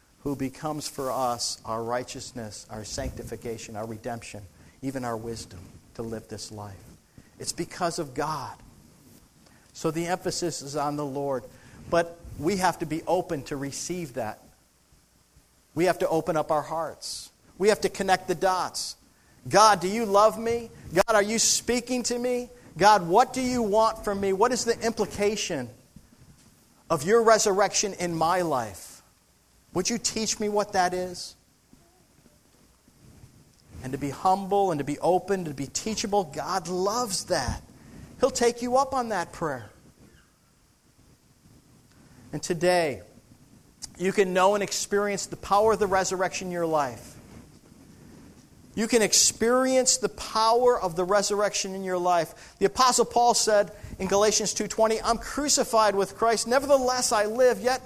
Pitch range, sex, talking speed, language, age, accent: 140-220 Hz, male, 150 wpm, English, 50-69, American